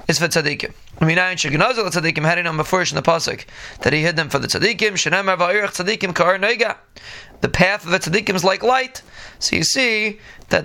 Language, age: English, 20-39